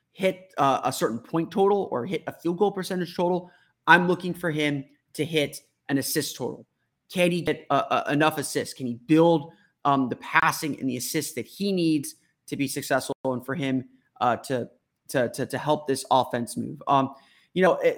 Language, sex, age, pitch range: English, male, 30-49, 135-160 Hz